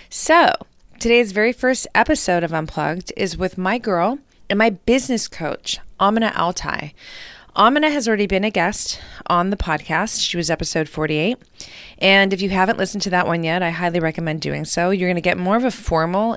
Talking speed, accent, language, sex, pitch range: 190 wpm, American, English, female, 160-215 Hz